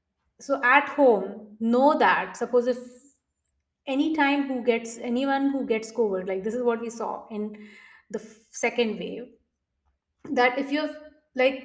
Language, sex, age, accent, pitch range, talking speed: English, female, 20-39, Indian, 210-260 Hz, 160 wpm